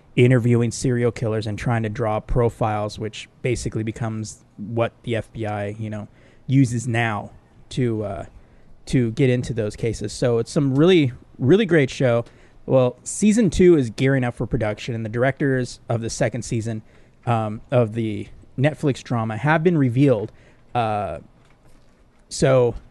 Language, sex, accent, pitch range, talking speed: English, male, American, 115-140 Hz, 150 wpm